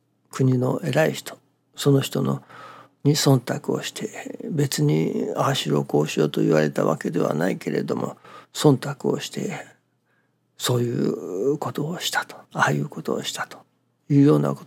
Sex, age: male, 60-79